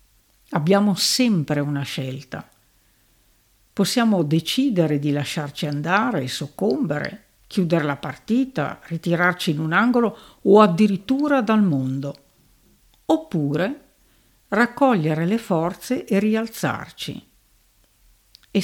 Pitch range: 145-210 Hz